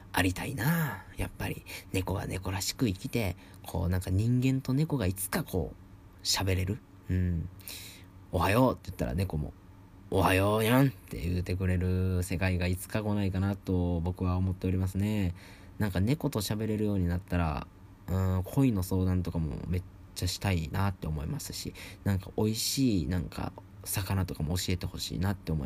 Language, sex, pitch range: Japanese, male, 90-100 Hz